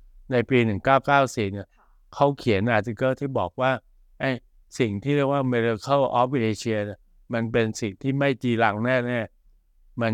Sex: male